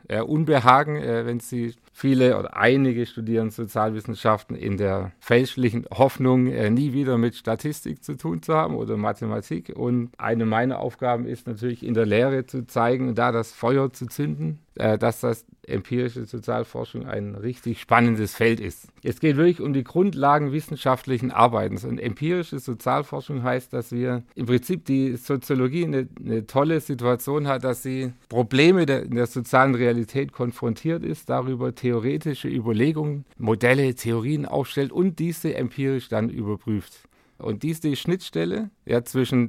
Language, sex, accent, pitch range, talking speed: German, male, German, 115-135 Hz, 150 wpm